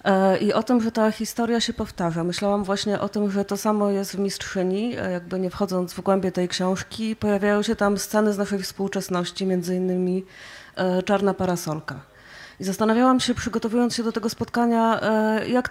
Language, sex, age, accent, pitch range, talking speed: Polish, female, 30-49, native, 180-205 Hz, 170 wpm